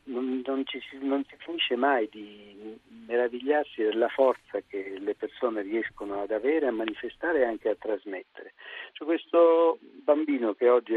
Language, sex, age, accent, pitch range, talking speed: Italian, male, 50-69, native, 110-175 Hz, 160 wpm